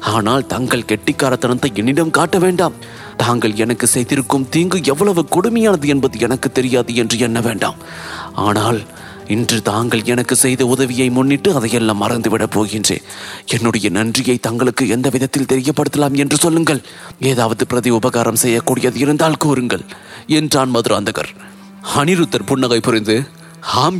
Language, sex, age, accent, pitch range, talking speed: English, male, 30-49, Indian, 125-155 Hz, 125 wpm